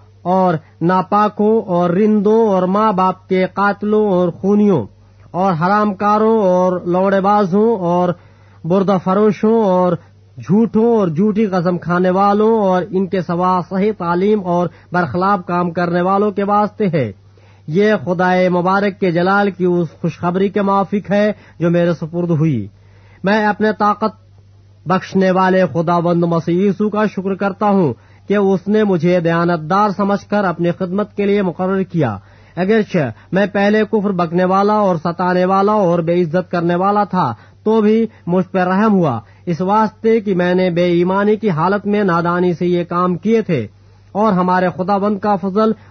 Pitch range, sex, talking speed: 175-205 Hz, male, 160 wpm